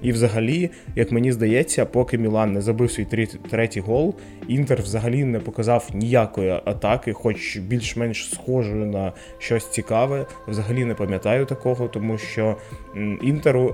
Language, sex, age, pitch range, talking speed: Ukrainian, male, 20-39, 110-125 Hz, 135 wpm